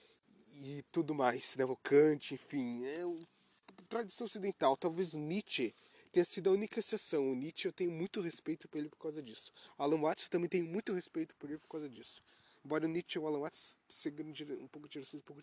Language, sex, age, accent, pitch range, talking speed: Portuguese, male, 20-39, Brazilian, 145-195 Hz, 220 wpm